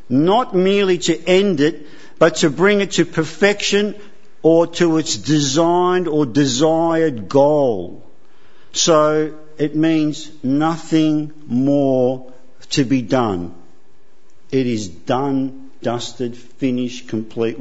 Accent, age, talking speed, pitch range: Australian, 50-69, 110 wpm, 135-185 Hz